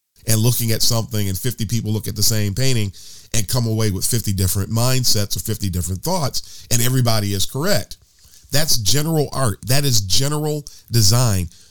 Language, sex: English, male